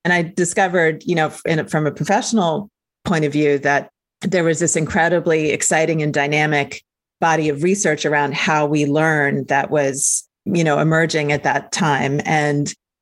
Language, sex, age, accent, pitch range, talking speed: English, female, 40-59, American, 150-180 Hz, 170 wpm